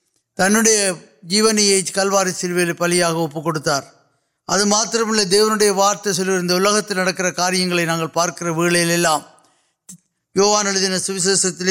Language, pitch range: Urdu, 175-205 Hz